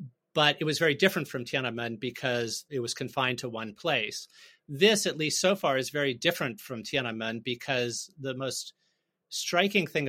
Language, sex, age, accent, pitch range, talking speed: English, male, 40-59, American, 120-155 Hz, 170 wpm